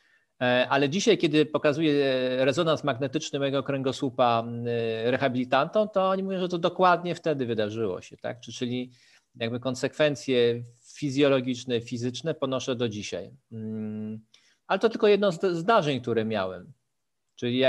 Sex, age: male, 40-59